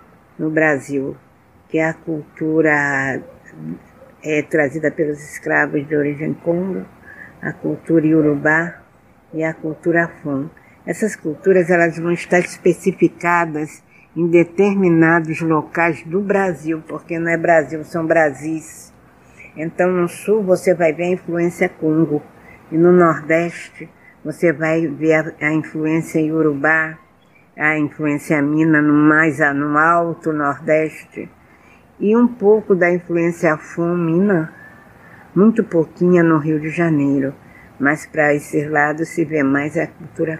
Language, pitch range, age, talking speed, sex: Portuguese, 150-170 Hz, 60-79, 120 wpm, female